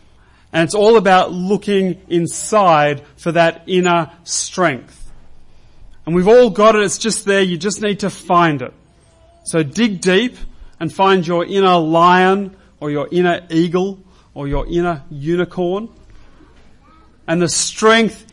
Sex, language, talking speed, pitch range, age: male, English, 140 wpm, 150-185 Hz, 30-49